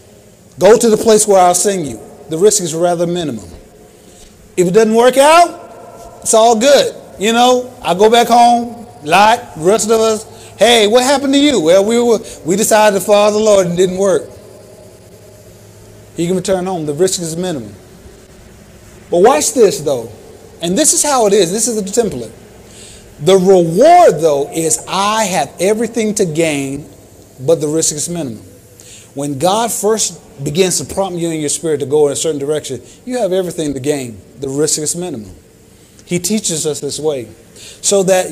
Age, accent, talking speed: 30-49, American, 185 wpm